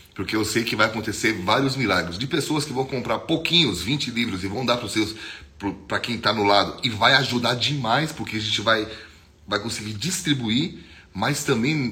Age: 30-49